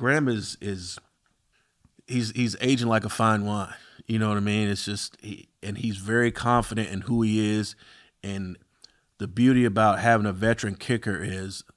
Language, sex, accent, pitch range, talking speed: English, male, American, 95-115 Hz, 180 wpm